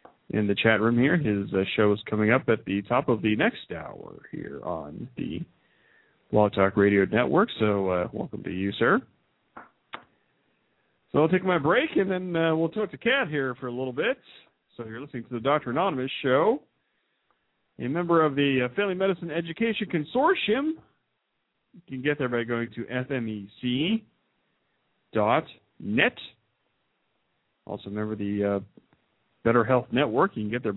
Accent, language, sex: American, English, male